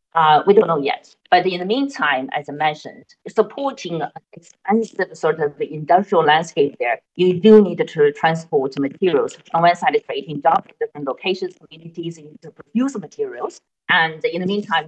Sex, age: female, 40-59